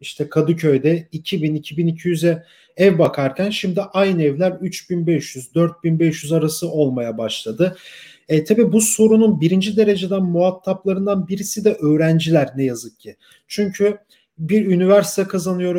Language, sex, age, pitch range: German, male, 40-59, 160-205 Hz